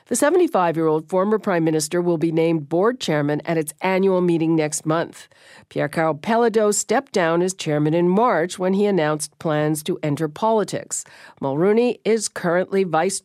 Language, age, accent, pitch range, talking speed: English, 50-69, American, 155-200 Hz, 160 wpm